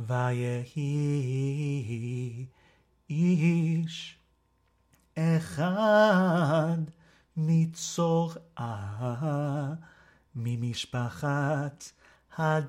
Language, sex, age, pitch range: English, male, 30-49, 125-165 Hz